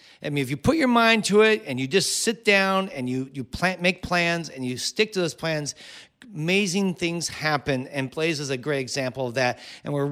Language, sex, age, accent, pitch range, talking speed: English, male, 40-59, American, 155-215 Hz, 230 wpm